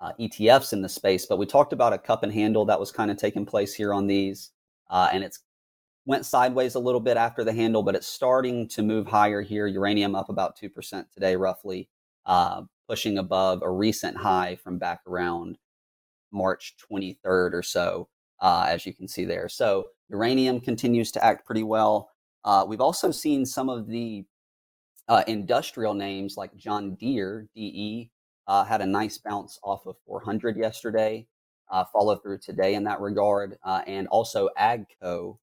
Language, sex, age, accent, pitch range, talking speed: English, male, 30-49, American, 95-110 Hz, 180 wpm